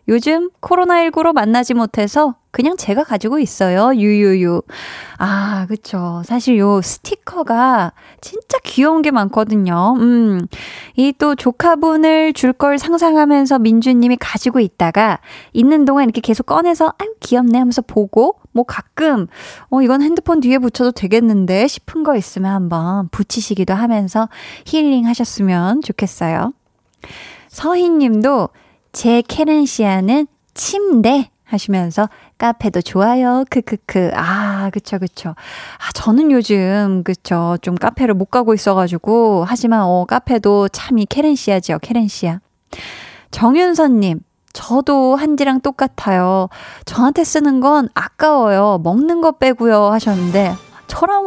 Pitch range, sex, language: 195-275 Hz, female, Korean